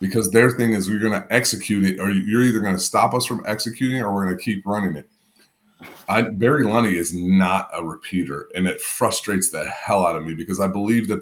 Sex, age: male, 30-49